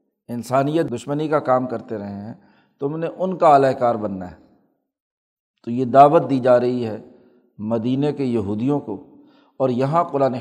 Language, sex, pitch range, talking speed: Urdu, male, 125-150 Hz, 165 wpm